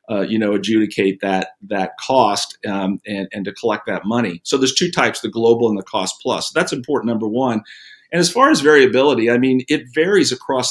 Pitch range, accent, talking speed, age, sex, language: 105-130 Hz, American, 215 wpm, 50-69, male, English